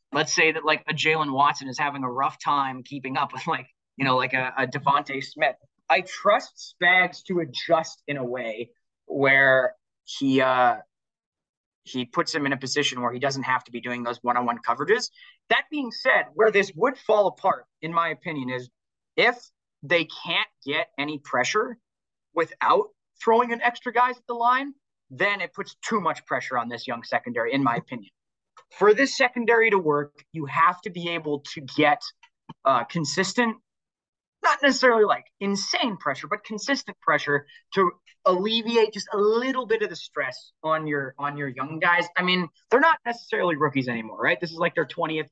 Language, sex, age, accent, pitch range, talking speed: English, male, 30-49, American, 140-210 Hz, 180 wpm